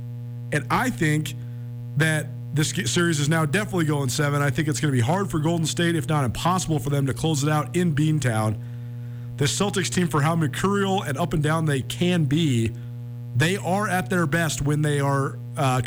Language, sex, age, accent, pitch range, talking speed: English, male, 40-59, American, 120-165 Hz, 205 wpm